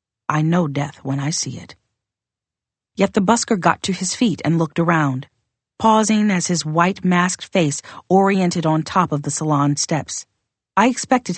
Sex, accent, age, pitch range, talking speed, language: female, American, 40-59, 145-190 Hz, 170 wpm, English